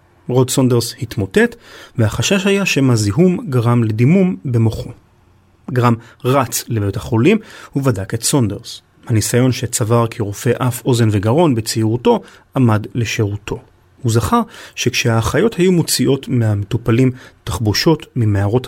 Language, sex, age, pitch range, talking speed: Hebrew, male, 30-49, 110-140 Hz, 105 wpm